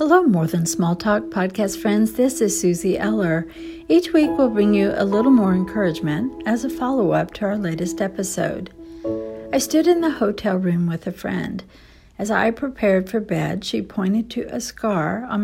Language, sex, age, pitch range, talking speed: English, female, 60-79, 180-235 Hz, 185 wpm